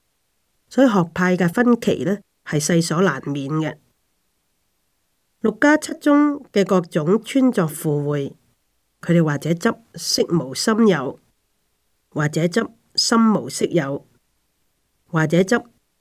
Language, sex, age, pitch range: Chinese, female, 40-59, 145-190 Hz